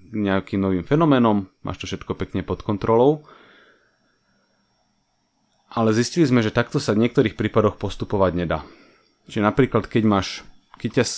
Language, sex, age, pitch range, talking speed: English, male, 30-49, 95-125 Hz, 135 wpm